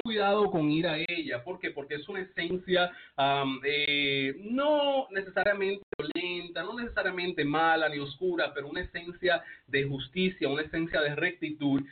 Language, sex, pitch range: English, male, 145-200 Hz